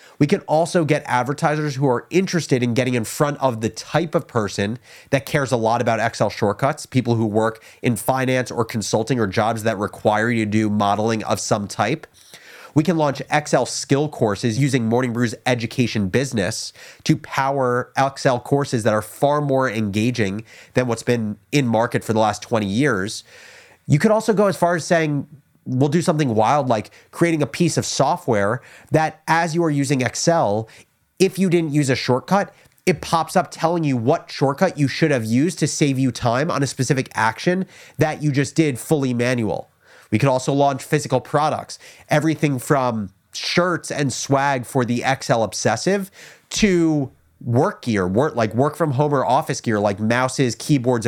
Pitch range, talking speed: 115-155 Hz, 180 wpm